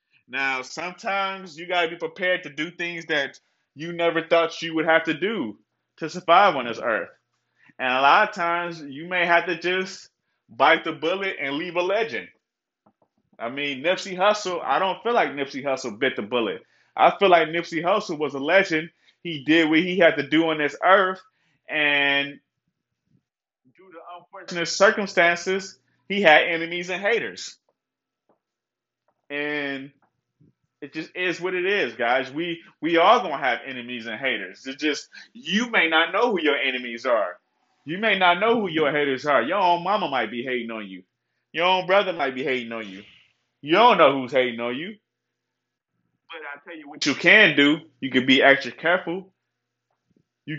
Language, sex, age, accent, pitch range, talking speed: English, male, 20-39, American, 135-180 Hz, 185 wpm